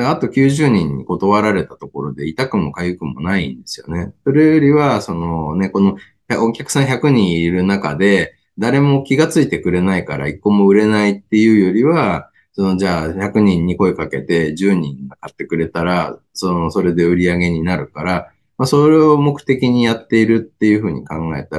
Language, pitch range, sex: Japanese, 85-120 Hz, male